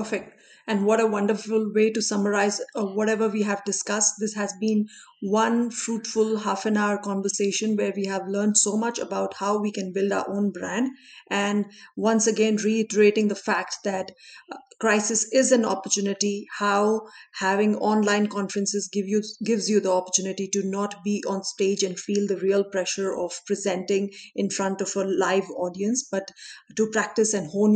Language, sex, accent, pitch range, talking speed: Hindi, female, native, 195-220 Hz, 170 wpm